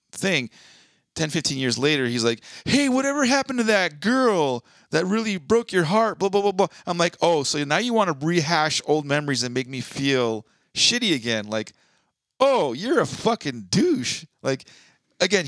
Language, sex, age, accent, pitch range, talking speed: English, male, 30-49, American, 115-155 Hz, 180 wpm